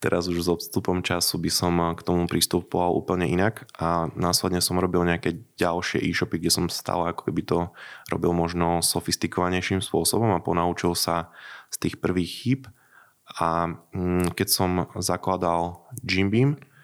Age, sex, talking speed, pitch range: 20-39, male, 145 wpm, 85-95 Hz